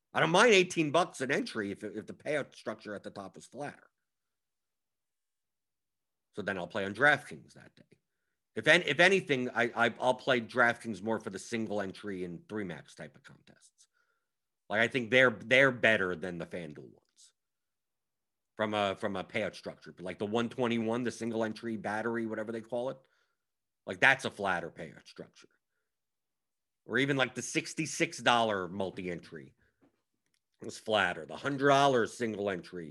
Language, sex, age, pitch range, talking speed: English, male, 50-69, 100-125 Hz, 175 wpm